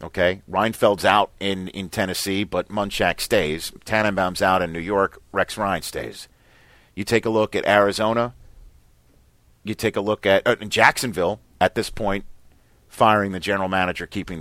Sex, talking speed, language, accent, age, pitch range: male, 160 wpm, English, American, 40-59, 95-120 Hz